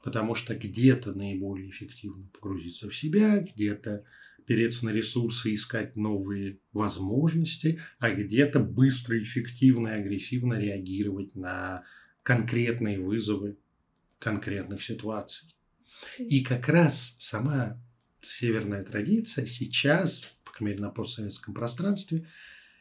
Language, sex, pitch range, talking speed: Russian, male, 105-135 Hz, 105 wpm